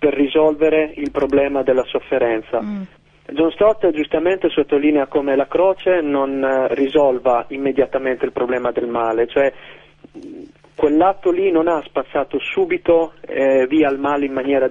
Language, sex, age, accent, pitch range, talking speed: Italian, male, 40-59, native, 135-170 Hz, 135 wpm